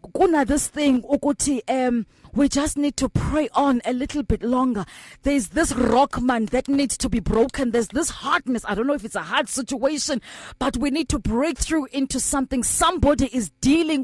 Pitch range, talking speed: 260-315 Hz, 180 wpm